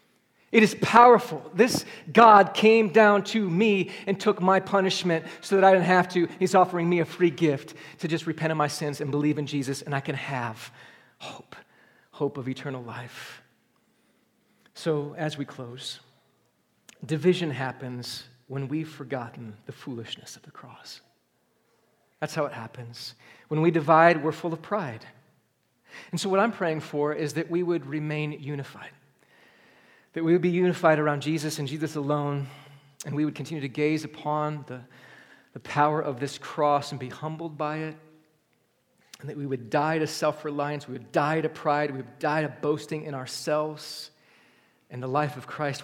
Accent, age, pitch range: American, 40-59, 135-165 Hz